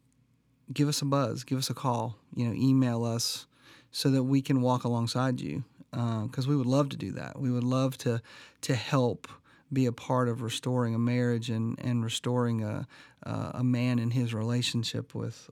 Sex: male